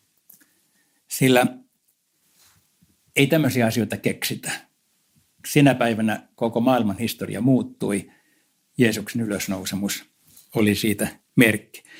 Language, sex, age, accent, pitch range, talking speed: Finnish, male, 60-79, native, 100-130 Hz, 80 wpm